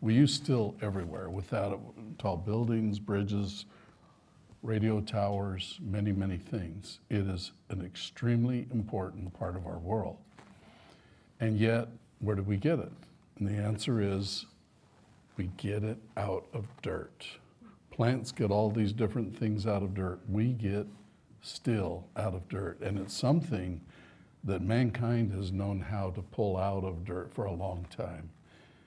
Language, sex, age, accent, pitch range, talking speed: English, male, 60-79, American, 95-110 Hz, 150 wpm